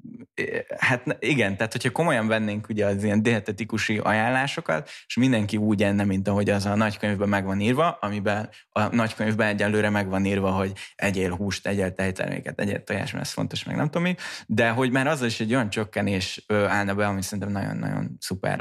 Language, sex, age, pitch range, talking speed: Hungarian, male, 20-39, 100-115 Hz, 185 wpm